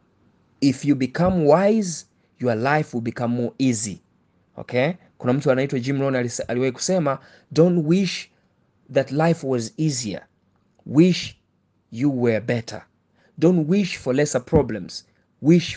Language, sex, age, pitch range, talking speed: Swahili, male, 30-49, 110-140 Hz, 130 wpm